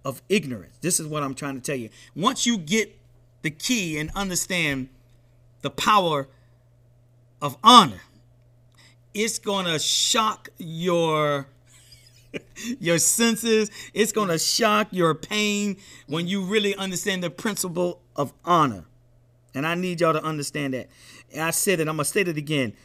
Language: English